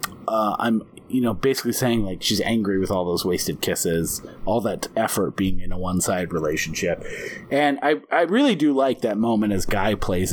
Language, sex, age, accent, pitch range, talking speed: English, male, 30-49, American, 110-155 Hz, 190 wpm